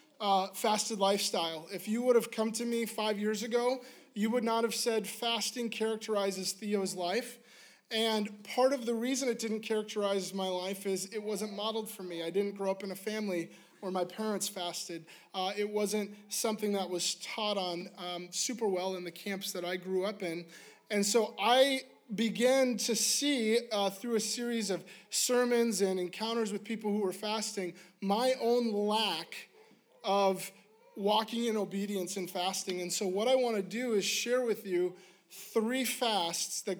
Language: English